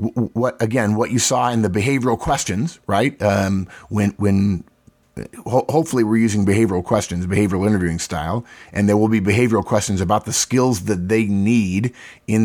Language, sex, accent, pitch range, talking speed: English, male, American, 100-120 Hz, 170 wpm